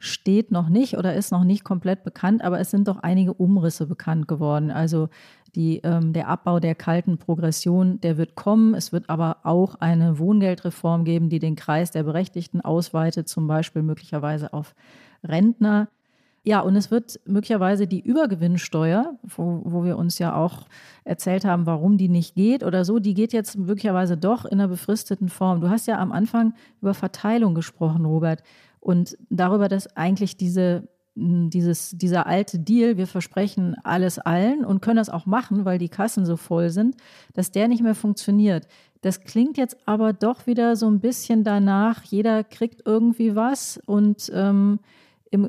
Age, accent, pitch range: 40-59, German, 175-210 Hz